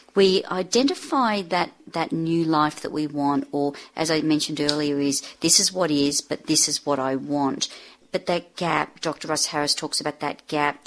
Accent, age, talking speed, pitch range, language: Australian, 50-69, 195 wpm, 145-180 Hz, English